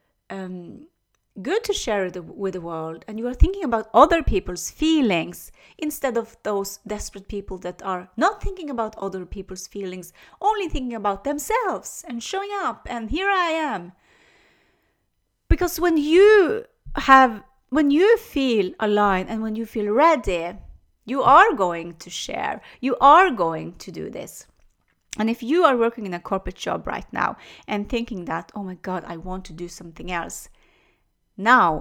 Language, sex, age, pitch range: English, female, 30-49, 180-255 Hz